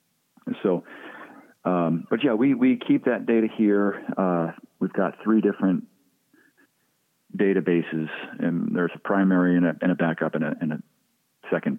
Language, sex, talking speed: English, male, 155 wpm